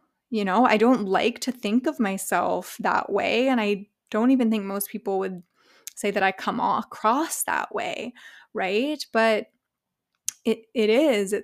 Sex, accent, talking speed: female, American, 155 wpm